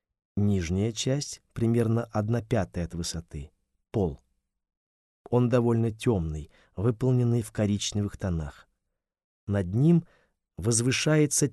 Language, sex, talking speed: Russian, male, 95 wpm